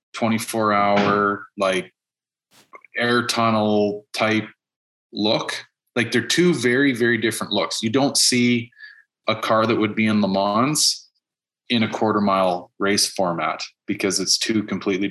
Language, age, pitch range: English, 30-49, 105-125 Hz